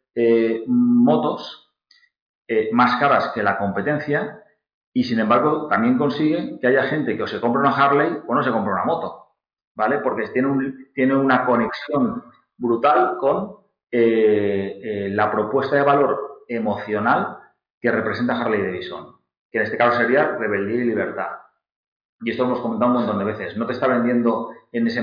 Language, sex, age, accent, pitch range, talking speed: Spanish, male, 30-49, Spanish, 110-140 Hz, 165 wpm